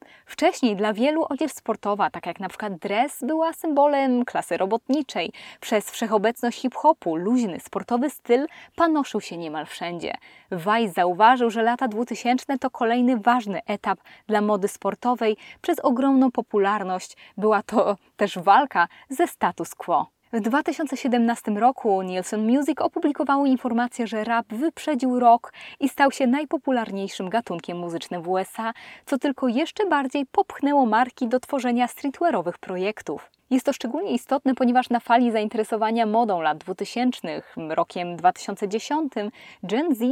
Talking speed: 130 wpm